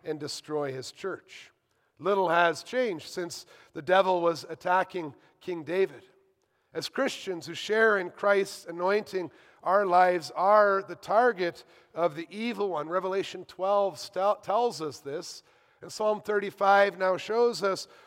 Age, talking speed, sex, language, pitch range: 50-69, 140 wpm, male, English, 165-200 Hz